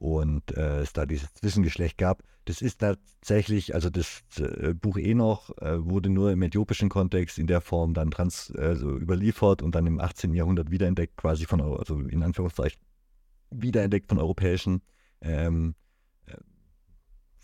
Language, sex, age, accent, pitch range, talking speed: German, male, 50-69, German, 85-105 Hz, 160 wpm